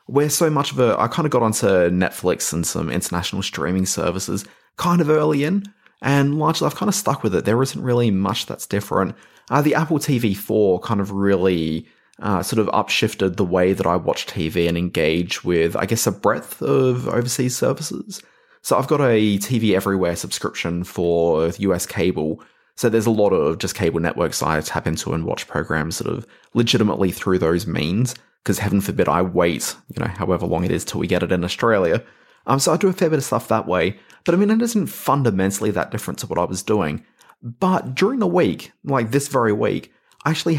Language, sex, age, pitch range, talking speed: English, male, 20-39, 95-140 Hz, 210 wpm